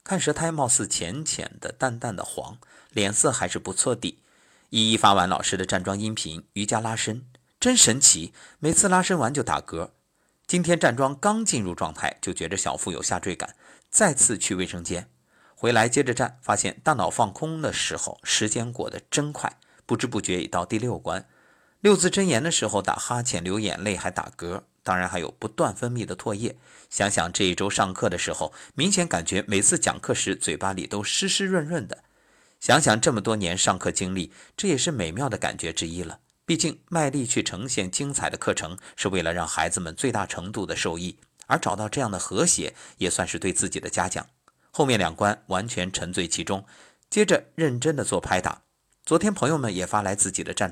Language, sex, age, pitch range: Chinese, male, 50-69, 95-160 Hz